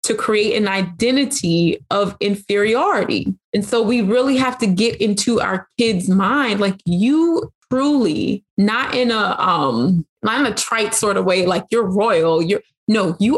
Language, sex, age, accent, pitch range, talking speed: English, female, 20-39, American, 195-235 Hz, 165 wpm